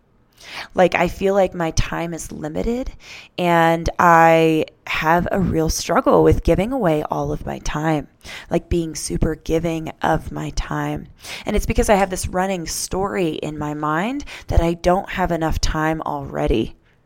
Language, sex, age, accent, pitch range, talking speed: English, female, 20-39, American, 150-180 Hz, 160 wpm